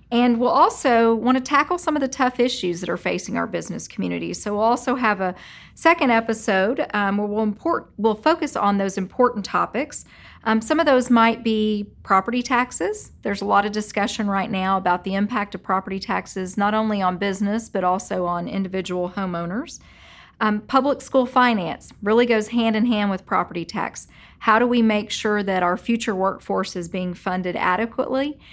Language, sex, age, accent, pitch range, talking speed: English, female, 40-59, American, 190-230 Hz, 185 wpm